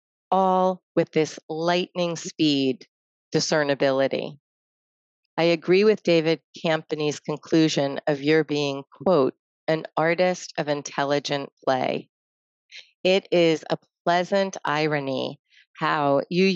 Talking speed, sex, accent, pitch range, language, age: 100 wpm, female, American, 145-175 Hz, English, 30-49